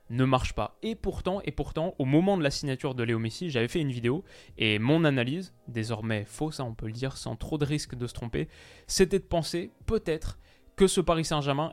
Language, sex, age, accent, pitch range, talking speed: French, male, 20-39, French, 120-150 Hz, 225 wpm